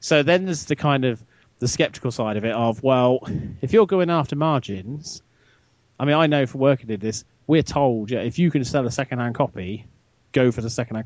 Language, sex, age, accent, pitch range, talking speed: English, male, 30-49, British, 110-140 Hz, 215 wpm